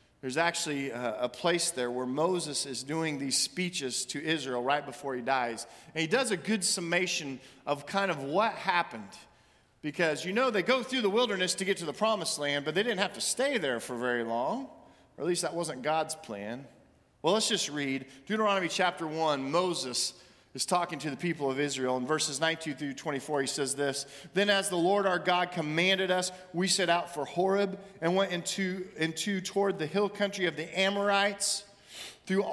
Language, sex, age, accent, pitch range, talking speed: English, male, 40-59, American, 135-185 Hz, 195 wpm